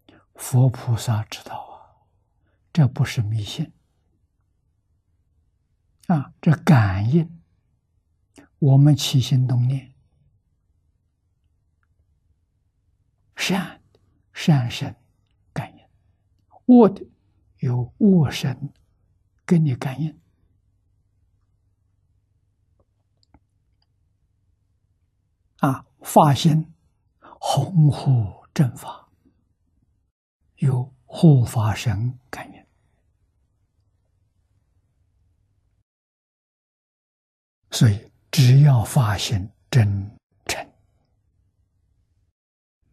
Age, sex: 60-79, male